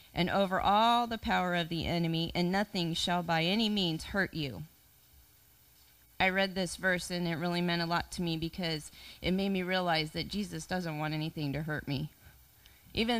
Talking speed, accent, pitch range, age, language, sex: 190 wpm, American, 165-205 Hz, 30-49, English, female